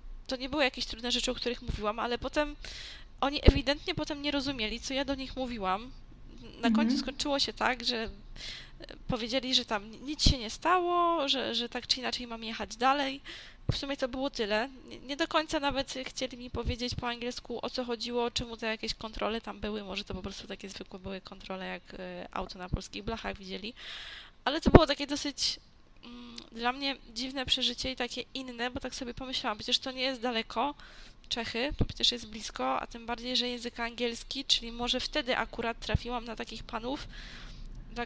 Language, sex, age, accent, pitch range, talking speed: Polish, female, 10-29, native, 220-270 Hz, 190 wpm